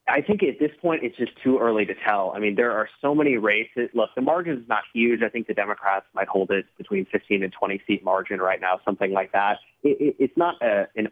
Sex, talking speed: male, 260 wpm